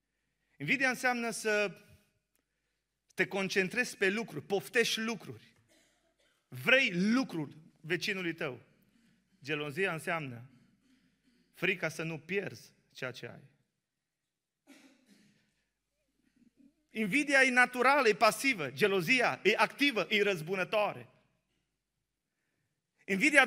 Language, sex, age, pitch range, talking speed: Romanian, male, 30-49, 160-230 Hz, 85 wpm